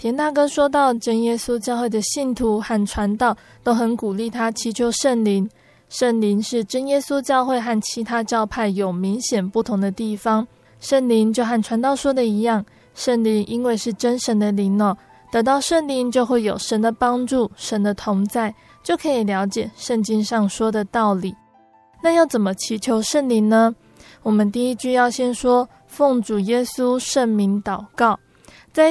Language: Chinese